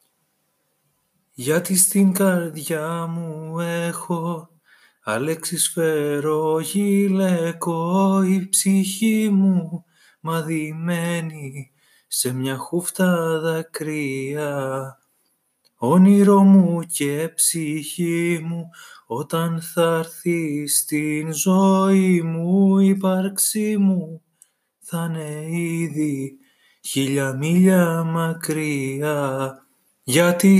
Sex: male